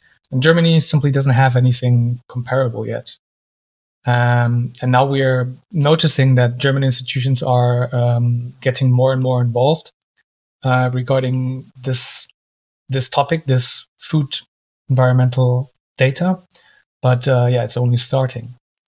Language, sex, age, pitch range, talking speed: English, male, 20-39, 120-135 Hz, 120 wpm